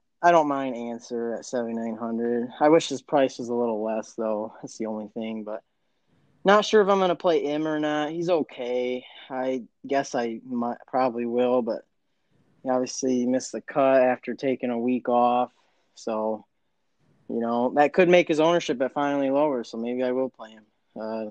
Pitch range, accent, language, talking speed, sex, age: 120-155 Hz, American, English, 185 wpm, male, 20-39